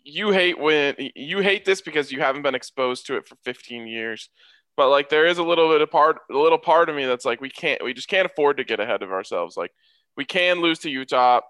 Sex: male